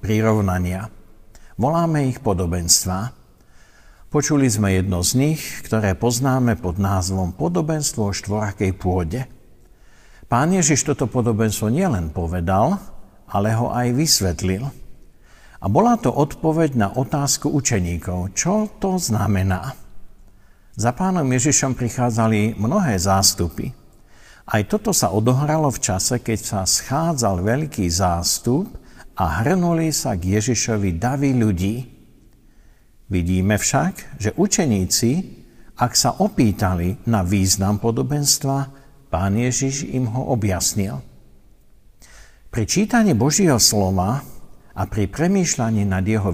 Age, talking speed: 50-69, 110 wpm